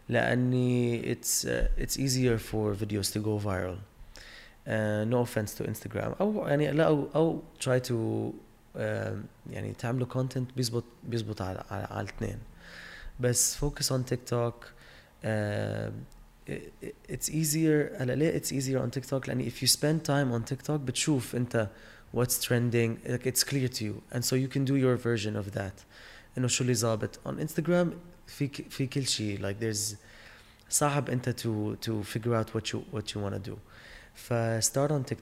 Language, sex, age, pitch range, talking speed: Arabic, male, 20-39, 105-130 Hz, 110 wpm